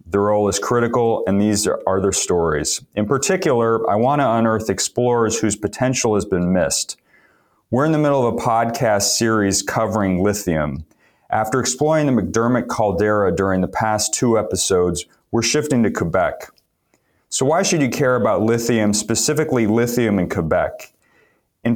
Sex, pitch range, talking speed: male, 95-120 Hz, 155 wpm